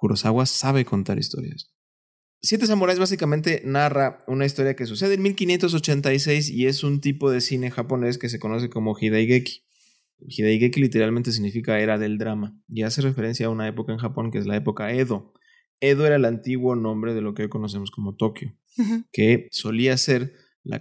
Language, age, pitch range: Spanish, 20-39, 110-135 Hz